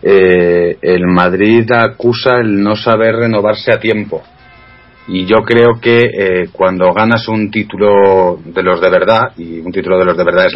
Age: 40-59